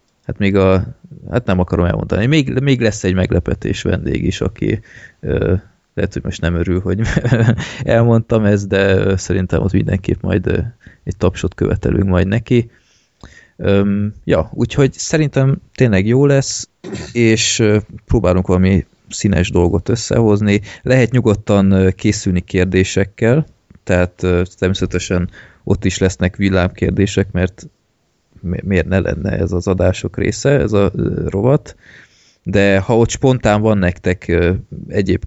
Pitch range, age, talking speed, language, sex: 90-110 Hz, 20-39, 125 wpm, Hungarian, male